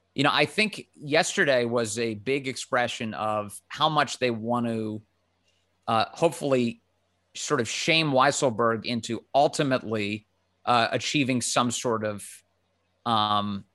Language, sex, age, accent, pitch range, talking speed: English, male, 30-49, American, 110-135 Hz, 125 wpm